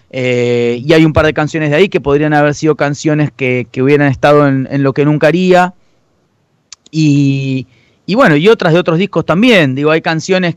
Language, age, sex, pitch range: Spanish, 30-49, male, 140-180 Hz